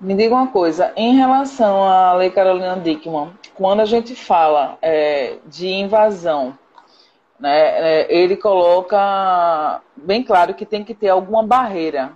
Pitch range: 180-235 Hz